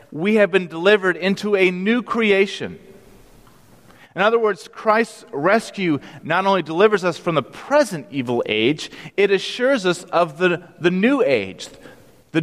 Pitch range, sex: 130-185 Hz, male